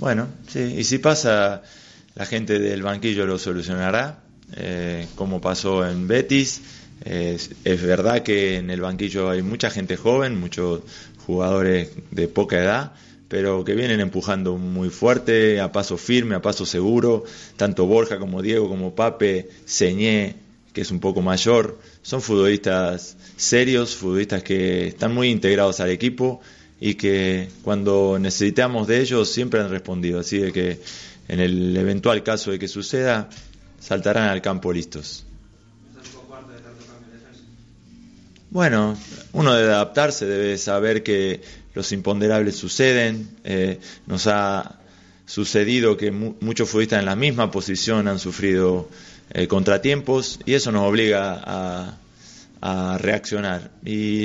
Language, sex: Spanish, male